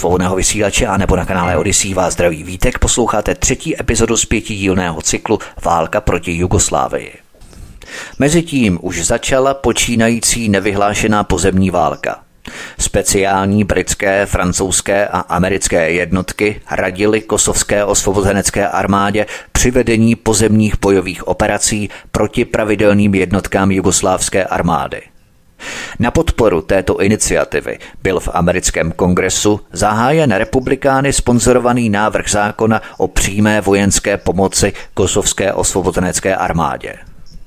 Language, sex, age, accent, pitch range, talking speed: Czech, male, 30-49, native, 95-110 Hz, 105 wpm